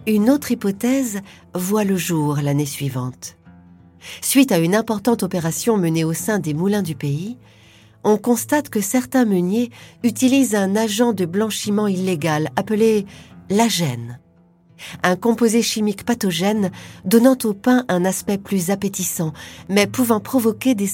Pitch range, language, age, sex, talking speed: 155-220 Hz, French, 40-59, female, 145 wpm